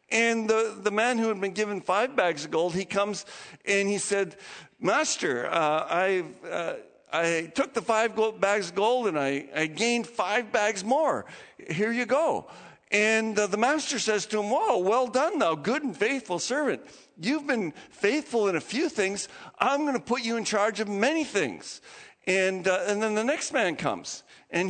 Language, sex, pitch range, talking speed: English, male, 185-245 Hz, 195 wpm